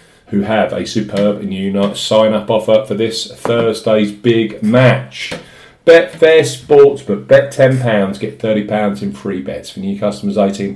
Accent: British